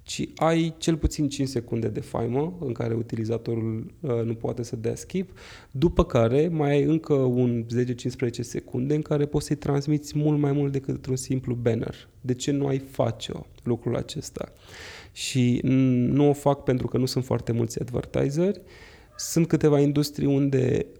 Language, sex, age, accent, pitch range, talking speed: Romanian, male, 20-39, native, 115-145 Hz, 165 wpm